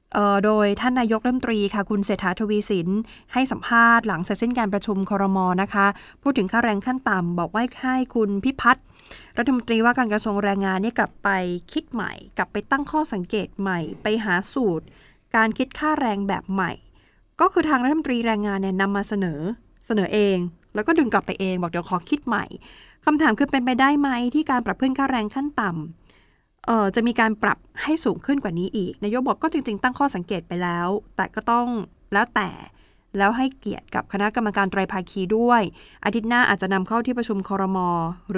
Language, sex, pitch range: Thai, female, 200-245 Hz